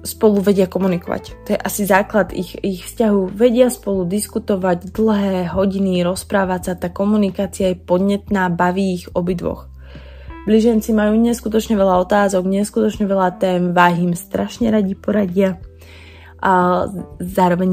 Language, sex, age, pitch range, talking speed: Slovak, female, 20-39, 175-195 Hz, 130 wpm